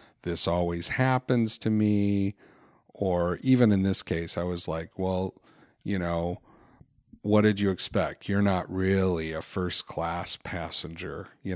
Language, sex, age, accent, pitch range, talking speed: English, male, 40-59, American, 90-110 Hz, 145 wpm